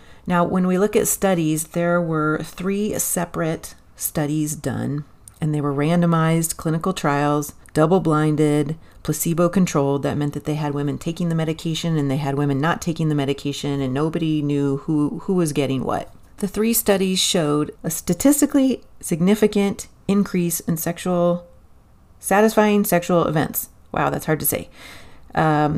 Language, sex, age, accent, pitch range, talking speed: English, female, 40-59, American, 150-180 Hz, 150 wpm